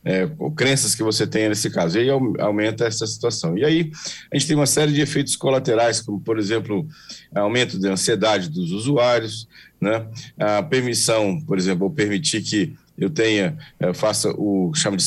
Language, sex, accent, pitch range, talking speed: Portuguese, male, Brazilian, 105-140 Hz, 180 wpm